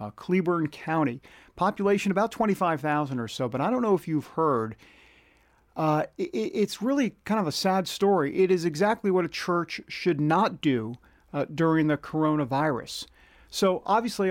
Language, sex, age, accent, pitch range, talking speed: English, male, 50-69, American, 140-180 Hz, 160 wpm